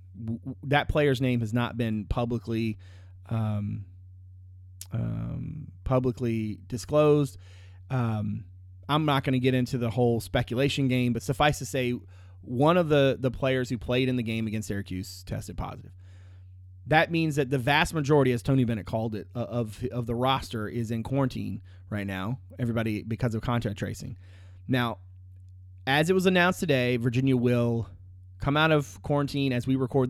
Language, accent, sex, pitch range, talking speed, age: English, American, male, 95-135 Hz, 160 wpm, 30-49